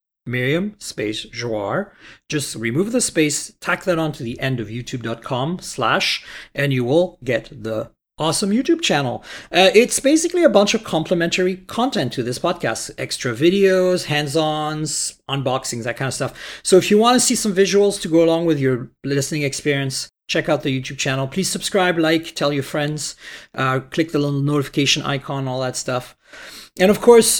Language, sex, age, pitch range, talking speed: English, male, 40-59, 135-180 Hz, 175 wpm